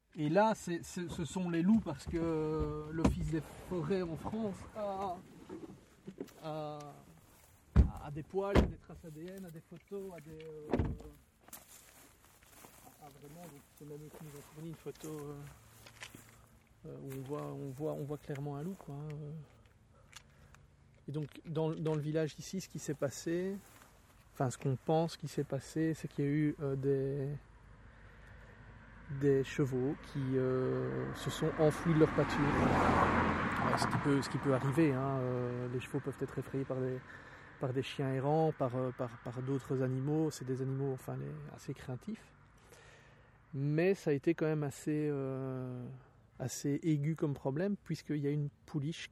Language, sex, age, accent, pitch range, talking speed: French, male, 40-59, French, 130-155 Hz, 165 wpm